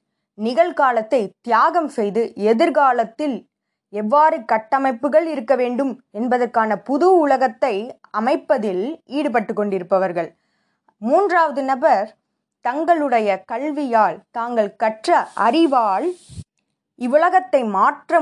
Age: 20-39